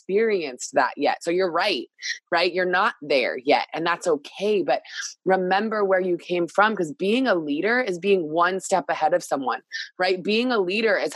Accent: American